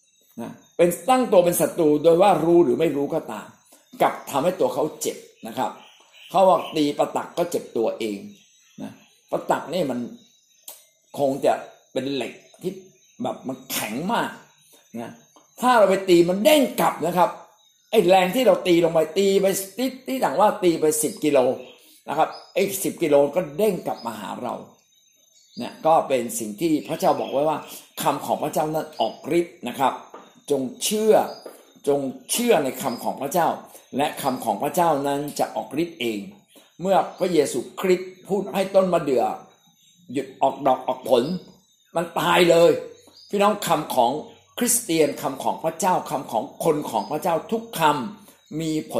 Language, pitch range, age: Thai, 150-205 Hz, 60-79